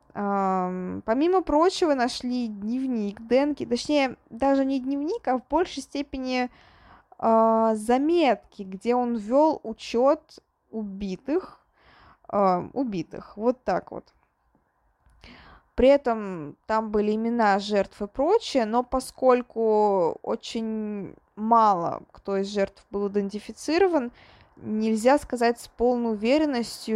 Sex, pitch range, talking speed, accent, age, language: female, 205-265 Hz, 105 wpm, native, 20-39, Russian